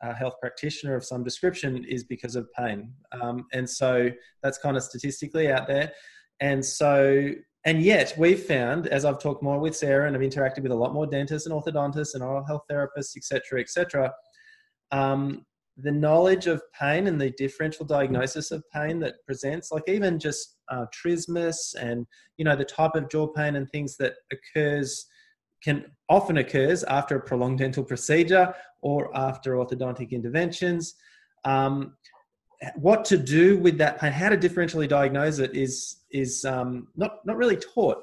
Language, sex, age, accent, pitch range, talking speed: English, male, 20-39, Australian, 130-160 Hz, 175 wpm